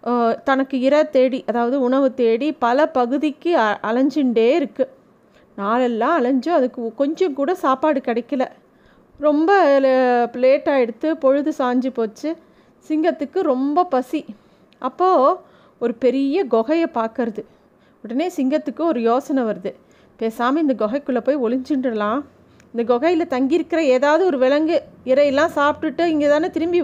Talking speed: 115 wpm